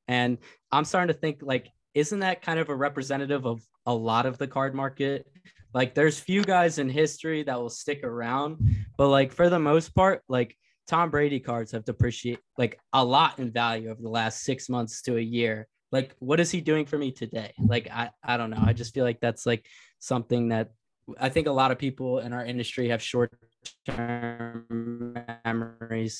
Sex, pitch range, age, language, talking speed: male, 115-140 Hz, 20-39, English, 200 wpm